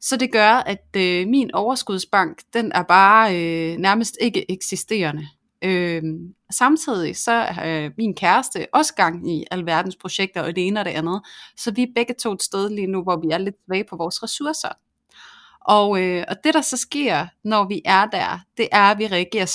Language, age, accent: Danish, 30-49, native